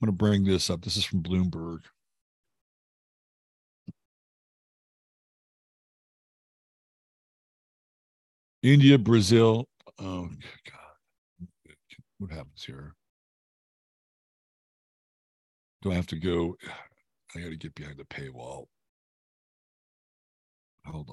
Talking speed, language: 85 wpm, English